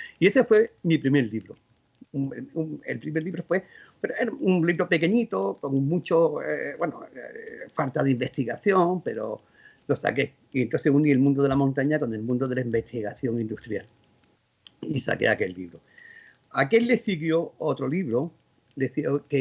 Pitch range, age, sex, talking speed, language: 130-185 Hz, 50-69, male, 165 wpm, Spanish